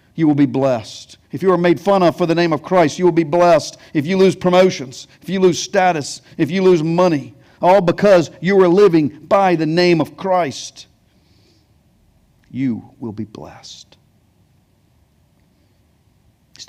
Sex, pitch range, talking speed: male, 115-175 Hz, 165 wpm